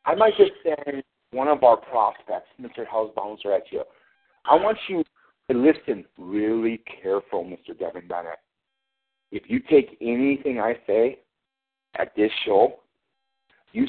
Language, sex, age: English, male, 50-69